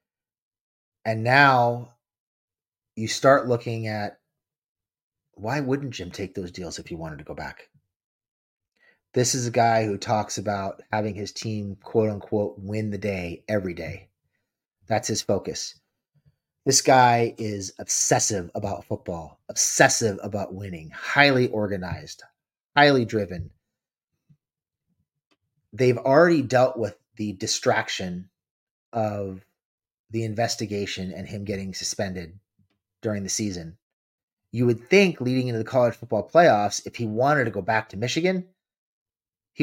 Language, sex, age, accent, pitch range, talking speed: English, male, 30-49, American, 100-125 Hz, 130 wpm